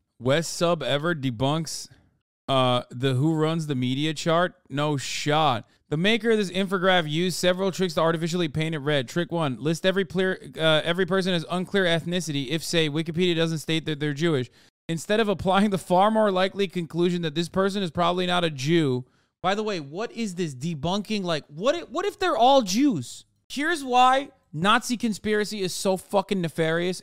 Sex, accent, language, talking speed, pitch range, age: male, American, English, 185 wpm, 155-220 Hz, 30-49